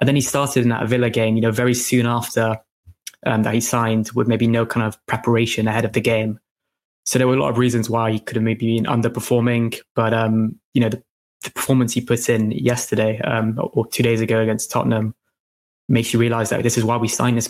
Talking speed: 235 wpm